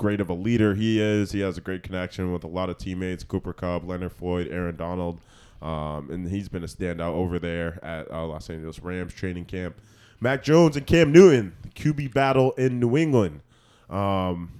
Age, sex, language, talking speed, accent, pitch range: 20-39, male, English, 195 wpm, American, 95-125 Hz